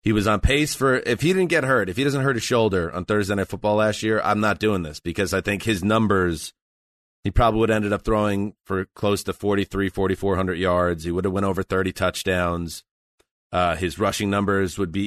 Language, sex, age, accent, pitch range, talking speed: English, male, 30-49, American, 90-110 Hz, 230 wpm